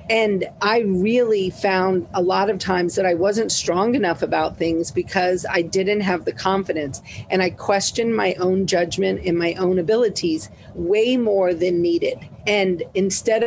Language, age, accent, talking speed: English, 40-59, American, 165 wpm